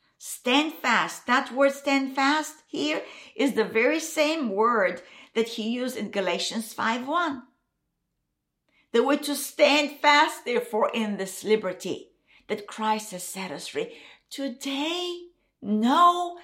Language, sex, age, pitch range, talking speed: English, female, 50-69, 230-335 Hz, 130 wpm